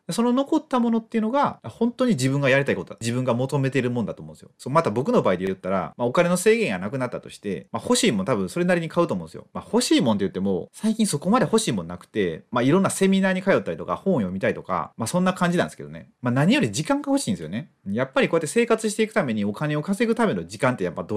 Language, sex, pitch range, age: Japanese, male, 135-225 Hz, 30-49